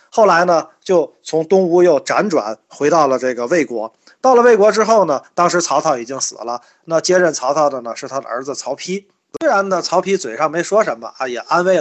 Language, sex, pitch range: Chinese, male, 135-190 Hz